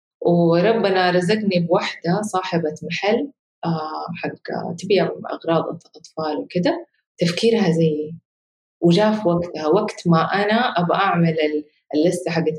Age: 30-49